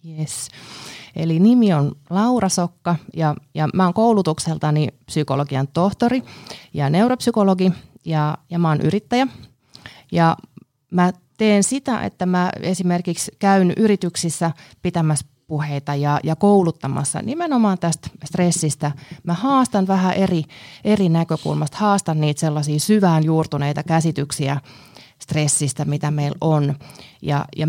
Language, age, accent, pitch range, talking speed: Finnish, 30-49, native, 145-190 Hz, 120 wpm